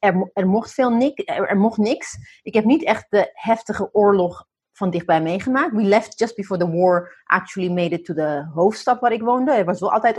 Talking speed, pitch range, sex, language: 230 wpm, 180-220 Hz, female, Dutch